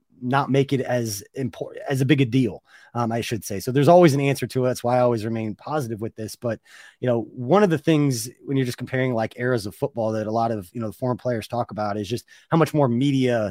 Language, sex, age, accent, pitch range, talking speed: English, male, 30-49, American, 120-145 Hz, 270 wpm